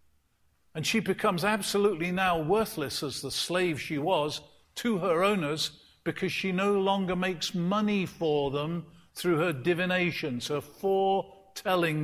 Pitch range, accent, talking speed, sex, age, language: 130-200 Hz, British, 135 wpm, male, 50-69, English